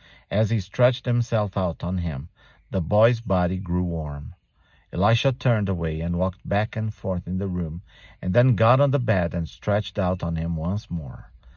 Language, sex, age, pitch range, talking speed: English, male, 50-69, 85-115 Hz, 185 wpm